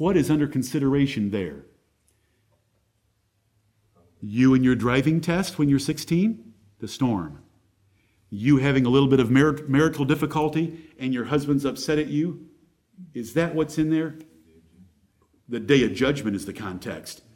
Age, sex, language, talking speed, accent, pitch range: 50-69, male, English, 140 wpm, American, 110-140 Hz